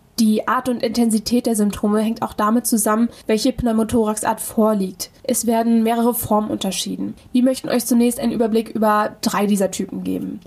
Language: German